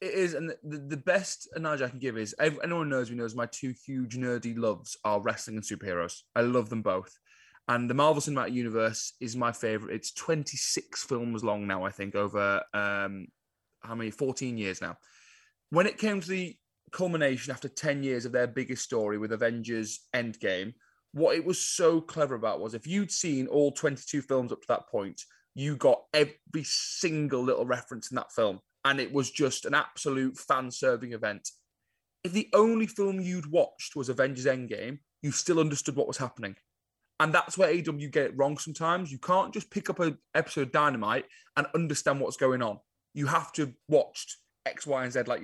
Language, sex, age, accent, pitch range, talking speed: English, male, 20-39, British, 120-165 Hz, 195 wpm